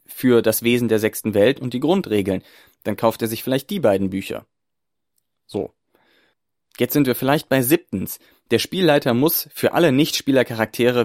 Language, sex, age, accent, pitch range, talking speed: German, male, 30-49, German, 110-125 Hz, 165 wpm